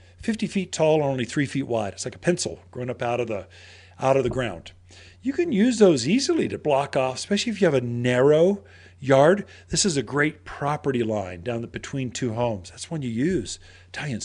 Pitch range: 100-160 Hz